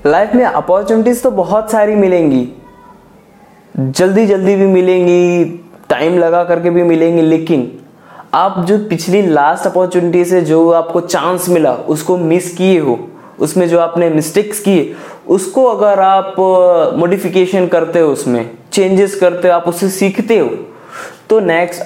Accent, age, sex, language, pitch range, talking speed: native, 20-39, male, Hindi, 155-190 Hz, 145 wpm